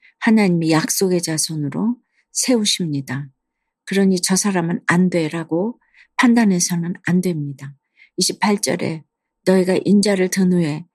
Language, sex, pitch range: Korean, female, 170-200 Hz